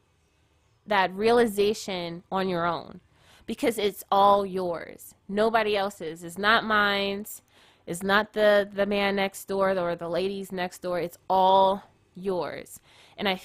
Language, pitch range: English, 175-210 Hz